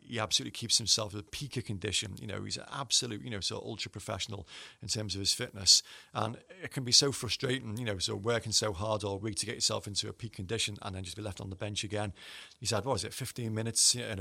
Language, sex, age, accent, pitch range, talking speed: English, male, 30-49, British, 100-115 Hz, 275 wpm